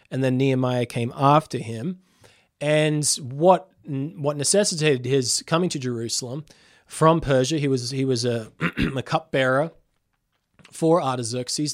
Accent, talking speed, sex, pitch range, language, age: Australian, 130 wpm, male, 125-155 Hz, English, 20-39